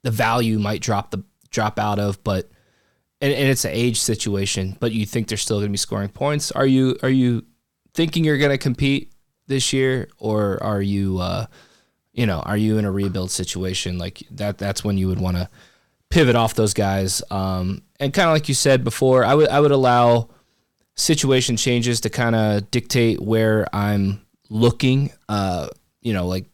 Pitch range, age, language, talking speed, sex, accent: 100-125 Hz, 20-39, English, 190 wpm, male, American